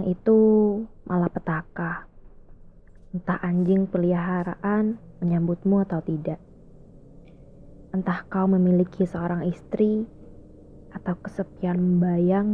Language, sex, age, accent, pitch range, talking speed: Indonesian, female, 20-39, native, 175-190 Hz, 80 wpm